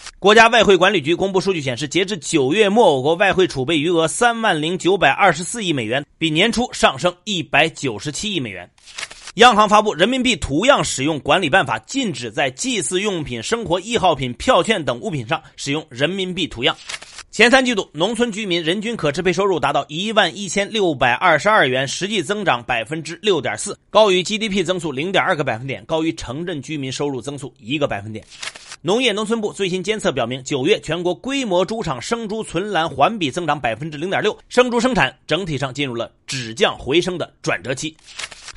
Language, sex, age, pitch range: Chinese, male, 30-49, 150-210 Hz